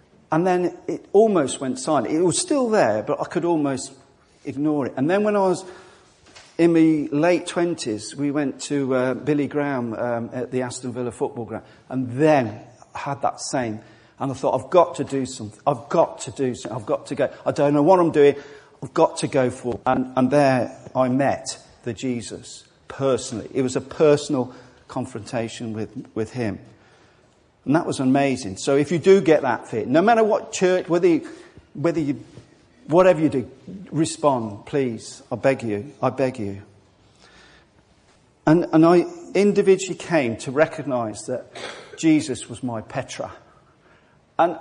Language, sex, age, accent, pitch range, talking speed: English, male, 50-69, British, 125-170 Hz, 180 wpm